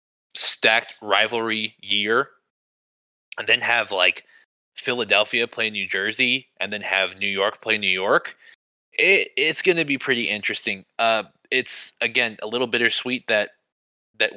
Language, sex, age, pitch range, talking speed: English, male, 20-39, 100-125 Hz, 140 wpm